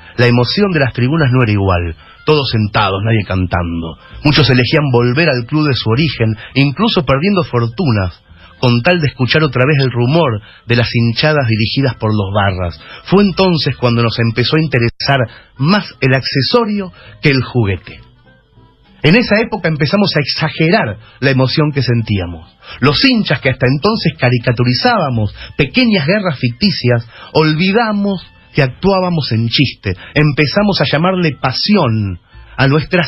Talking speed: 145 wpm